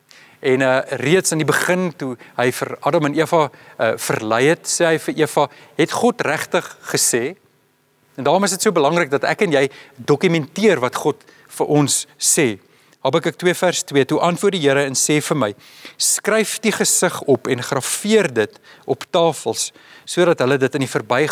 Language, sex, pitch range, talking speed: English, male, 130-170 Hz, 190 wpm